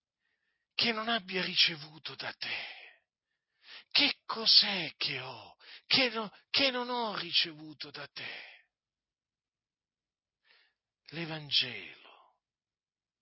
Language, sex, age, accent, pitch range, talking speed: Italian, male, 50-69, native, 140-215 Hz, 80 wpm